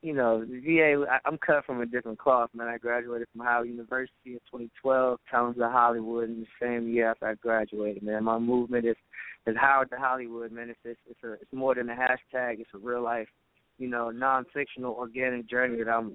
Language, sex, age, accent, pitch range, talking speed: English, male, 20-39, American, 115-130 Hz, 210 wpm